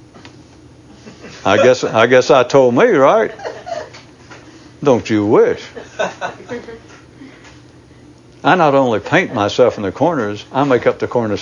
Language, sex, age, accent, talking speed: English, male, 60-79, American, 125 wpm